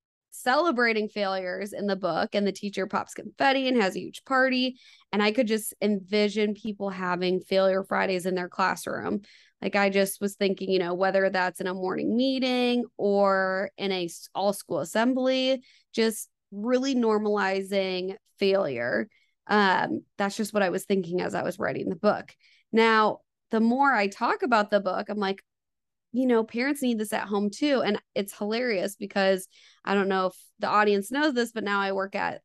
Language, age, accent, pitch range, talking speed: English, 20-39, American, 195-240 Hz, 180 wpm